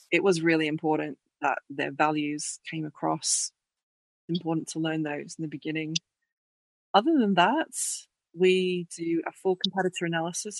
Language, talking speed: English, 145 wpm